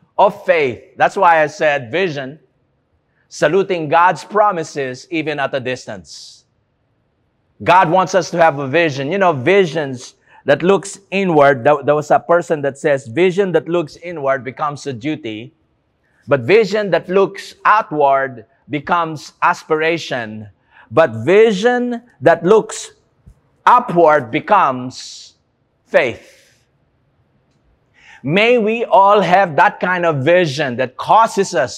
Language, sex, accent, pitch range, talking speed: English, male, Filipino, 145-200 Hz, 125 wpm